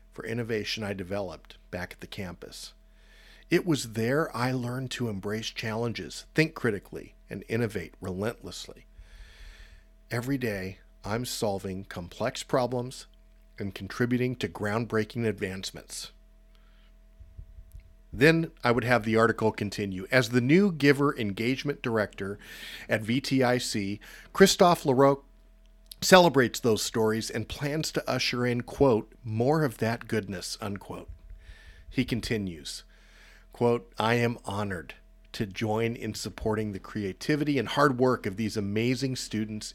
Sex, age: male, 50-69